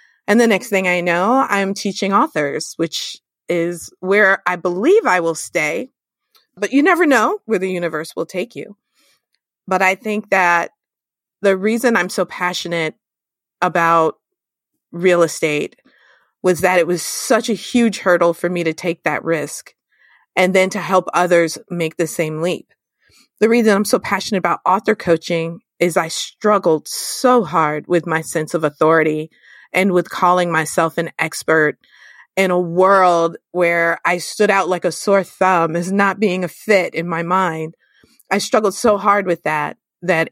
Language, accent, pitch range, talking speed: English, American, 170-200 Hz, 165 wpm